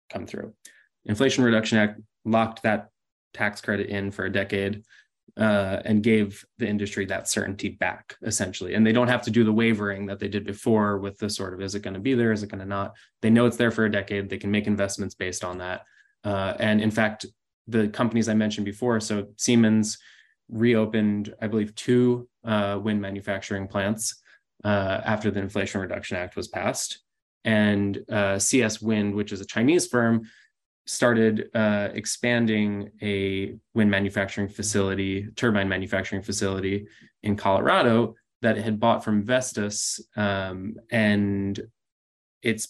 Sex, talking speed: male, 170 wpm